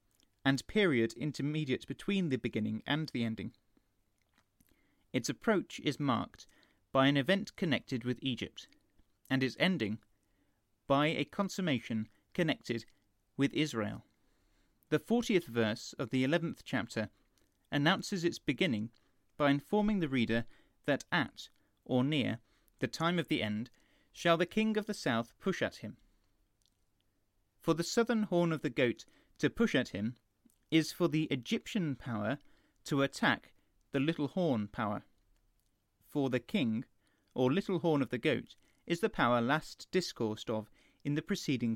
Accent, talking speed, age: British, 145 wpm, 30-49